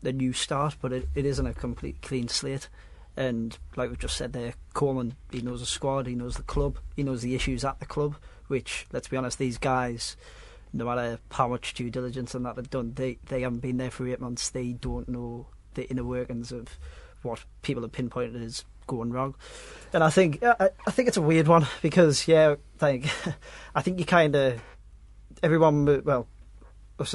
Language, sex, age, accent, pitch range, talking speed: English, male, 30-49, British, 120-140 Hz, 205 wpm